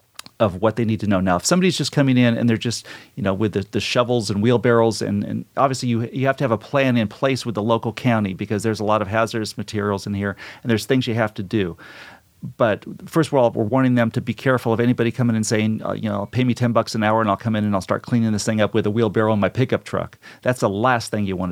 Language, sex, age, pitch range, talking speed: English, male, 40-59, 105-120 Hz, 285 wpm